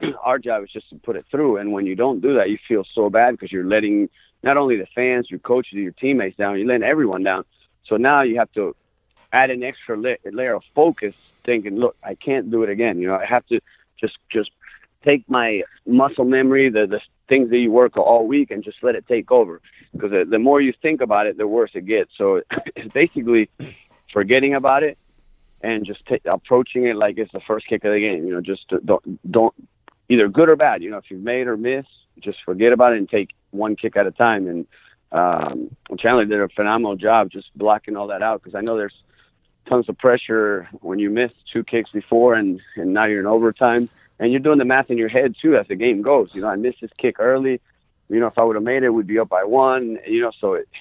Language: English